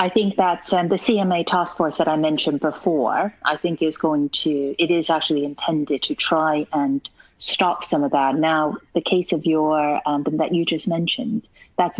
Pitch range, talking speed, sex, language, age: 145-170 Hz, 195 wpm, female, English, 40-59